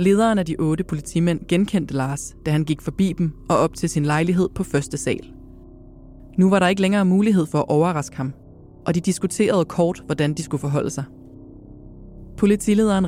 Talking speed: 185 wpm